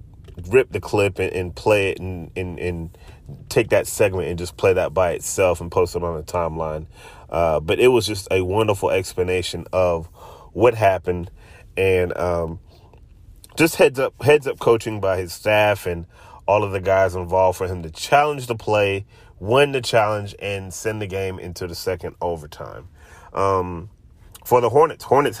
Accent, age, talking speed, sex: American, 30-49, 175 wpm, male